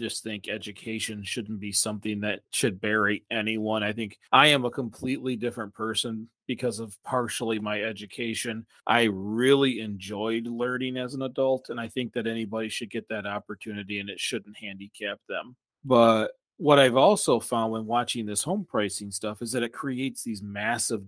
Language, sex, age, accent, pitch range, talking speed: English, male, 40-59, American, 105-130 Hz, 175 wpm